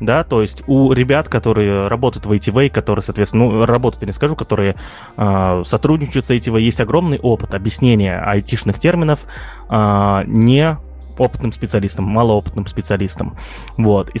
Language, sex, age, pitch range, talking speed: Russian, male, 20-39, 105-130 Hz, 145 wpm